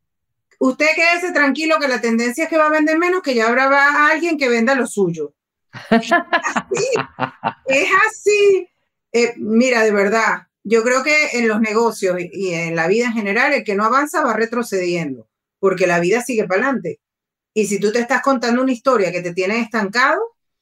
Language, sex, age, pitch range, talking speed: Spanish, female, 30-49, 195-280 Hz, 185 wpm